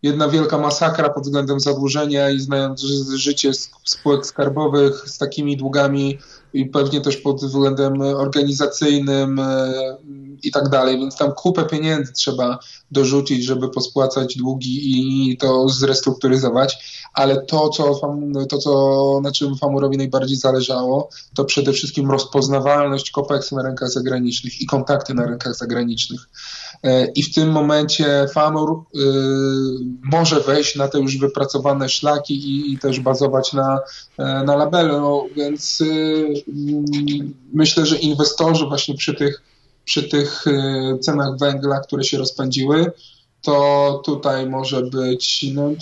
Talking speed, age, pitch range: 135 wpm, 20-39, 135-145 Hz